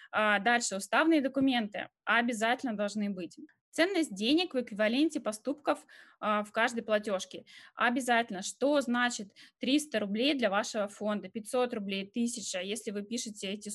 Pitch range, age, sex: 205-245 Hz, 20-39, female